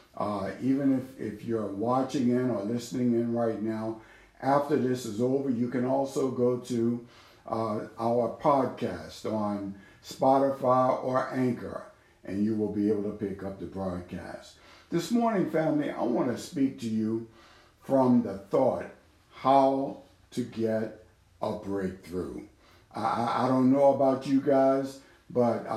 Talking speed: 145 wpm